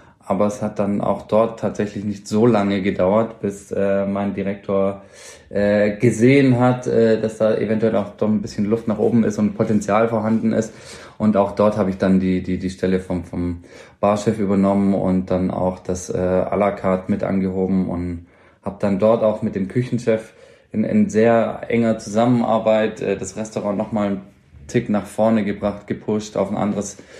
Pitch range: 95-110 Hz